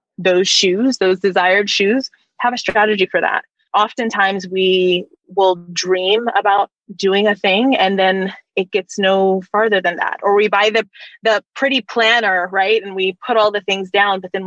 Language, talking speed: English, 180 wpm